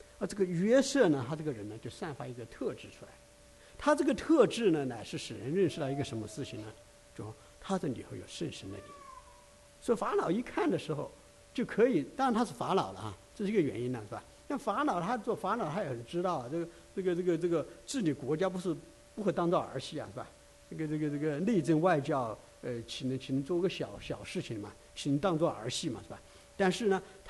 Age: 60-79